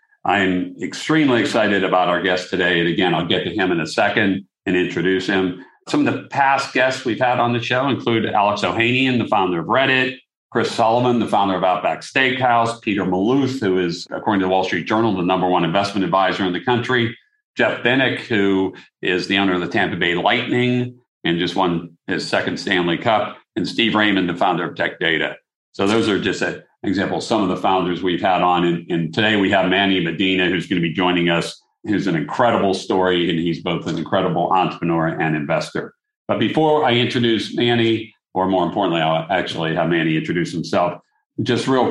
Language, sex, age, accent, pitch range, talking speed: English, male, 50-69, American, 90-115 Hz, 205 wpm